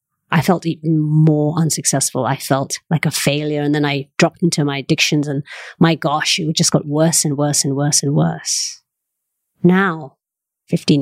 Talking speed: 175 wpm